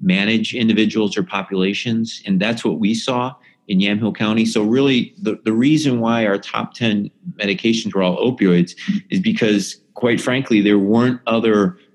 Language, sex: English, male